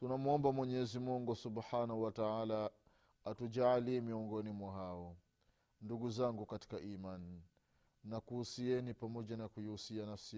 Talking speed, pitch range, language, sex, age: 110 wpm, 120-180 Hz, Swahili, male, 30-49